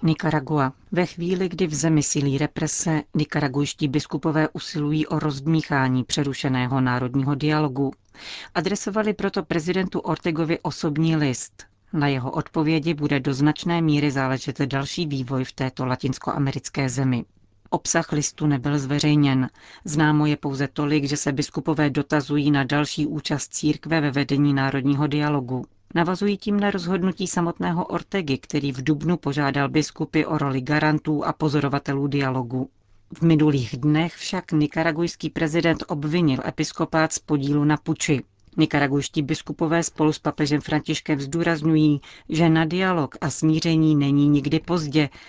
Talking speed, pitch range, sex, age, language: 130 wpm, 140-165 Hz, female, 40-59, Czech